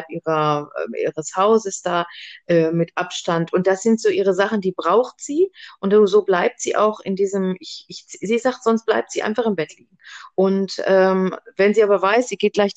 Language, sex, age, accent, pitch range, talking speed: German, female, 40-59, German, 170-220 Hz, 190 wpm